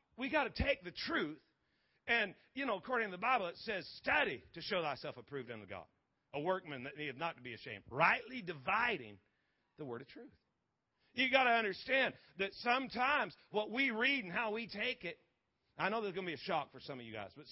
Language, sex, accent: English, male, American